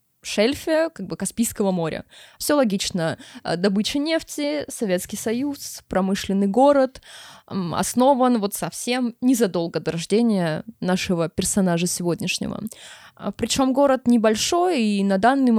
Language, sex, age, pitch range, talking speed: Russian, female, 20-39, 190-235 Hz, 110 wpm